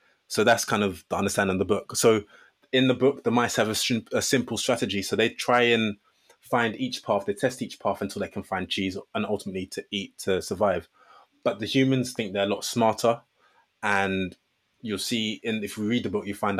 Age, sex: 20-39, male